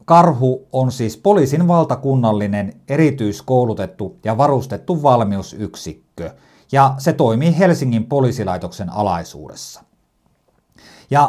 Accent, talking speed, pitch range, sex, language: native, 85 wpm, 105-160 Hz, male, Finnish